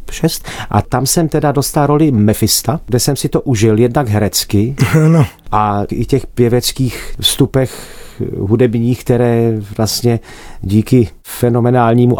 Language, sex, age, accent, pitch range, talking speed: Czech, male, 40-59, native, 110-130 Hz, 120 wpm